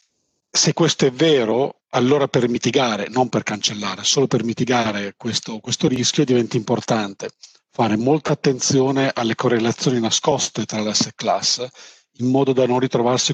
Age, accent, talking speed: 40-59, native, 150 wpm